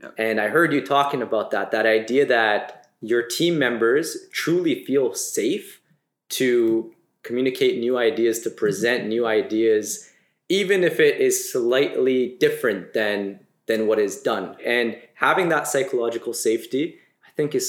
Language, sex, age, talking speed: English, male, 20-39, 145 wpm